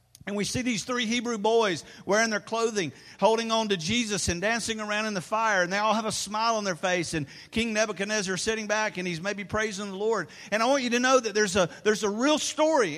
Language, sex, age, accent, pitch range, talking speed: English, male, 50-69, American, 195-240 Hz, 250 wpm